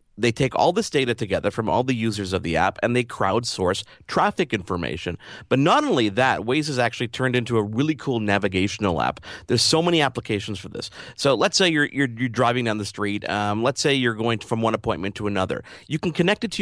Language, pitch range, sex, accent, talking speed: English, 105-135 Hz, male, American, 230 wpm